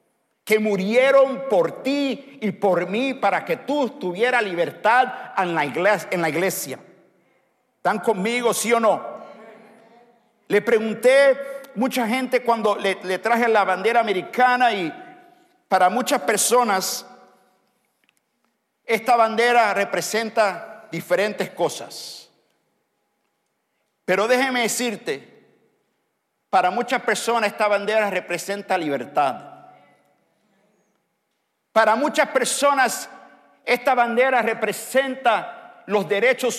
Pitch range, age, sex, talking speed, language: 200-255 Hz, 50-69, male, 95 wpm, English